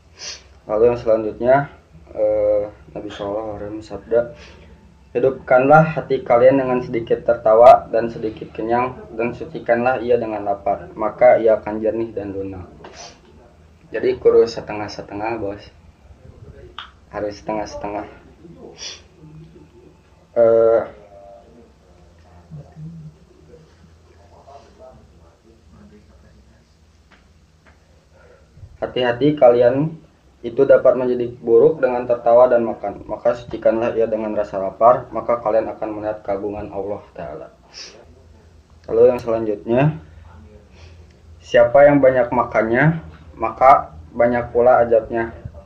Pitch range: 80-115 Hz